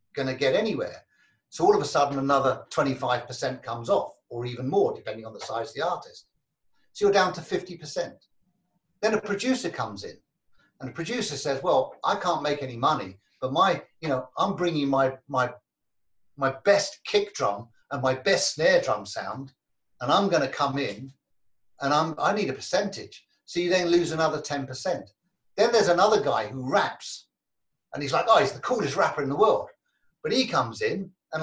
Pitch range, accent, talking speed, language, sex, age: 135-215 Hz, British, 195 wpm, English, male, 50-69